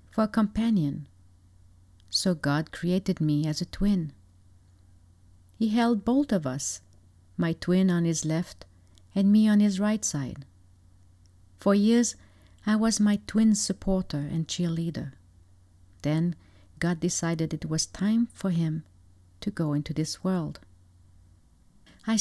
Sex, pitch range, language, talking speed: female, 135-205 Hz, English, 130 wpm